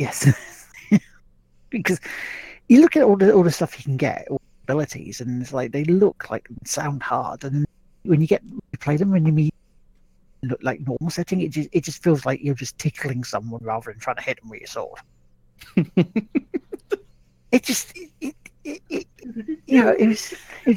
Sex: male